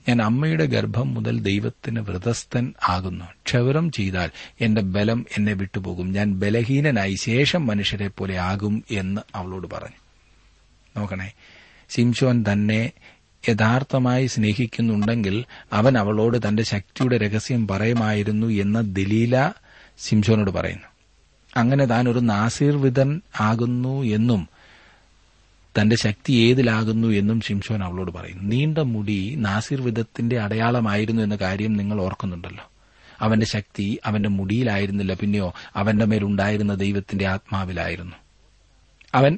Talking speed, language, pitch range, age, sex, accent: 100 wpm, Malayalam, 95-120 Hz, 30-49, male, native